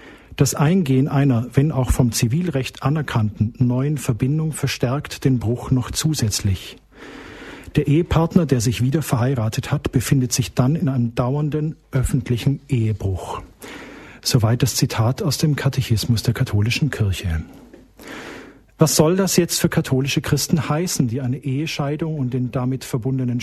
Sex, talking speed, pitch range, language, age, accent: male, 140 wpm, 120-150 Hz, German, 50-69, German